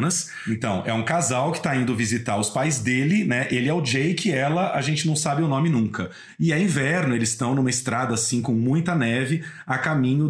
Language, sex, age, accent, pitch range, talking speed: Portuguese, male, 40-59, Brazilian, 115-155 Hz, 220 wpm